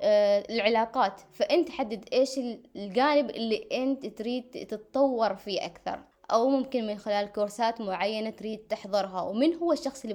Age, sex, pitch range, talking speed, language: 20-39, female, 210-270 Hz, 135 wpm, Arabic